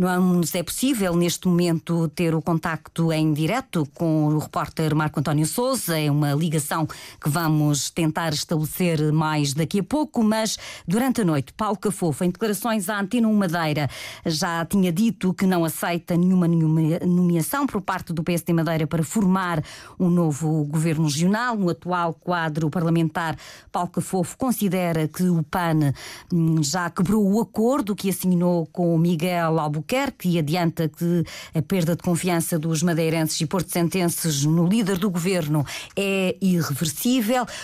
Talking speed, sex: 155 wpm, female